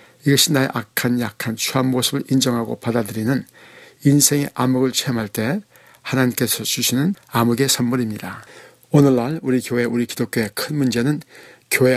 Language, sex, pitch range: Korean, male, 115-130 Hz